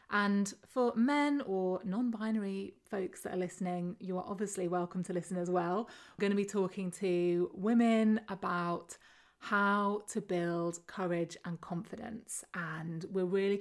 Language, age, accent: English, 30-49, British